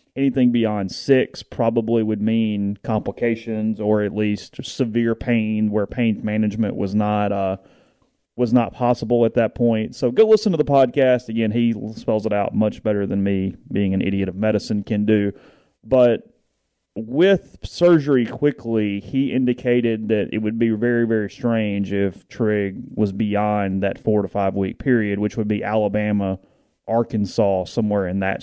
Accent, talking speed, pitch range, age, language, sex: American, 160 wpm, 105-120 Hz, 30-49, English, male